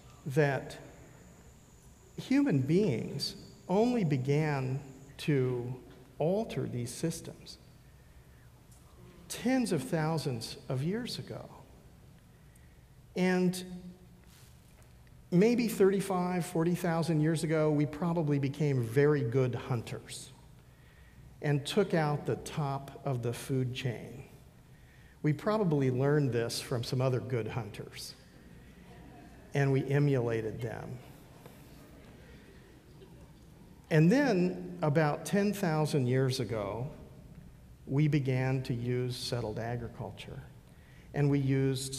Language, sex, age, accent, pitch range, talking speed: English, male, 50-69, American, 120-160 Hz, 90 wpm